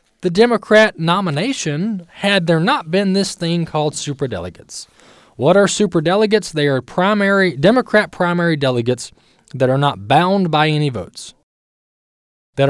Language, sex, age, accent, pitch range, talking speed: English, male, 20-39, American, 120-175 Hz, 130 wpm